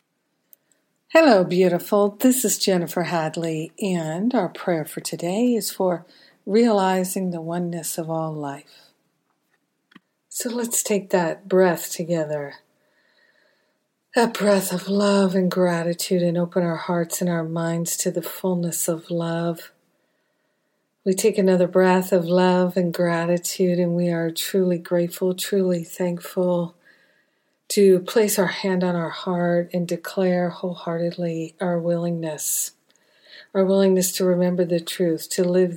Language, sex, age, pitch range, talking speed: English, female, 50-69, 170-190 Hz, 130 wpm